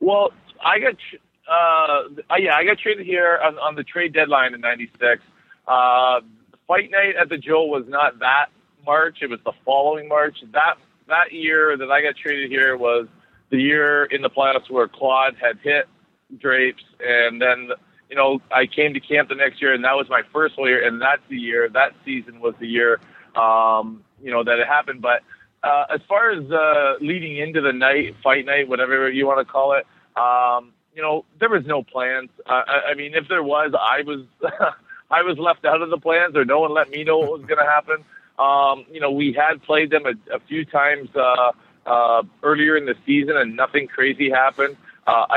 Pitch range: 130-160 Hz